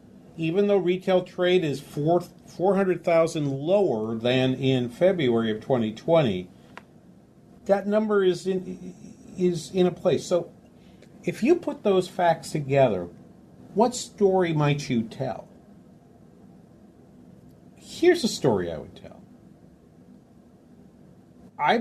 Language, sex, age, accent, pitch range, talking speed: English, male, 50-69, American, 110-180 Hz, 105 wpm